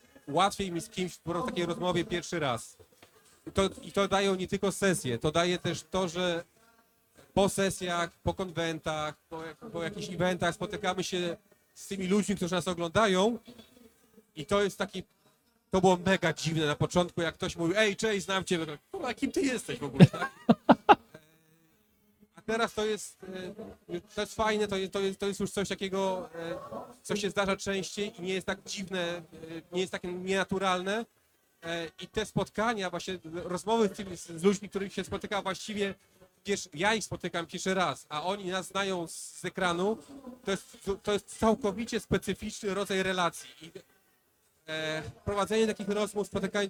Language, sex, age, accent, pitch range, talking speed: Polish, male, 40-59, native, 175-205 Hz, 160 wpm